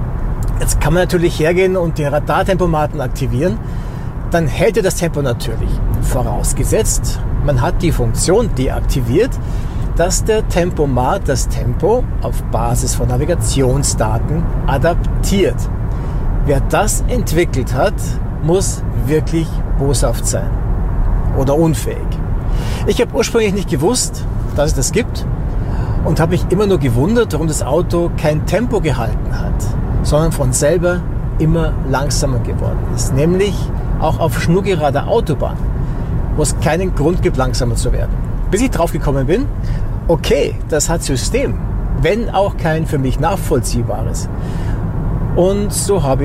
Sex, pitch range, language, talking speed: male, 115-155 Hz, German, 130 wpm